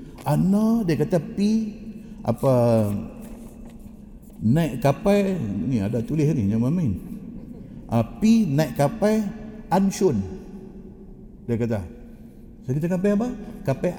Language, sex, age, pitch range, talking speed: Malay, male, 60-79, 125-200 Hz, 105 wpm